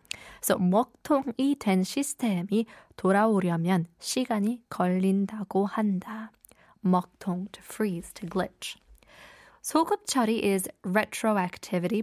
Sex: female